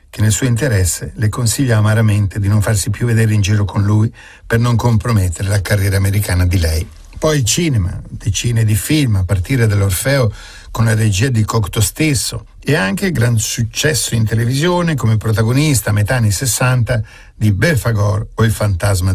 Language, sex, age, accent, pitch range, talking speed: Italian, male, 50-69, native, 100-120 Hz, 170 wpm